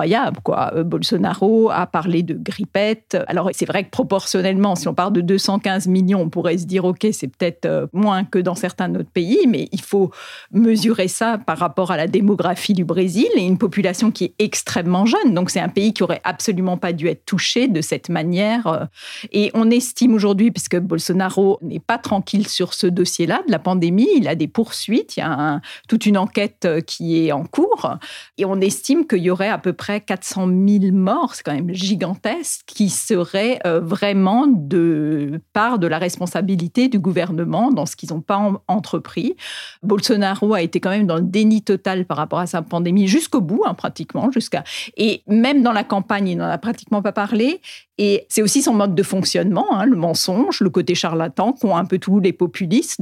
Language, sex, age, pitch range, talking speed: French, female, 40-59, 180-220 Hz, 195 wpm